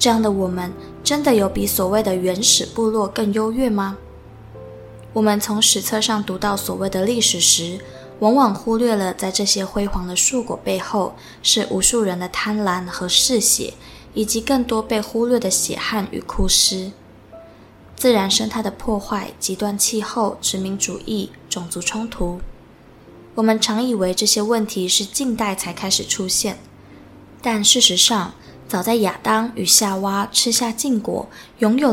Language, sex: Chinese, female